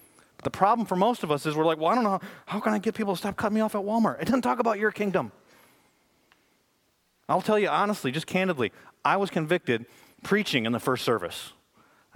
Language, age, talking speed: English, 30-49, 230 wpm